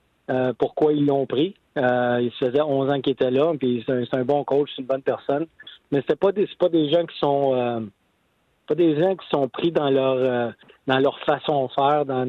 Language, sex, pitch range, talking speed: French, male, 130-150 Hz, 250 wpm